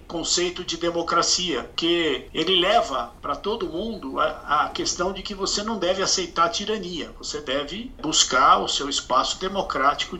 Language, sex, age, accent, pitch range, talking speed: Portuguese, male, 60-79, Brazilian, 185-250 Hz, 155 wpm